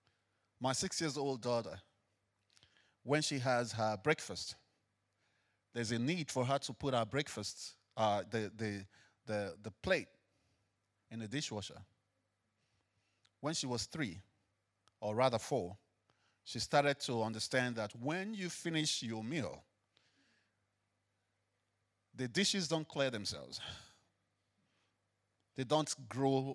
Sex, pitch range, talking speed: male, 100-140 Hz, 120 wpm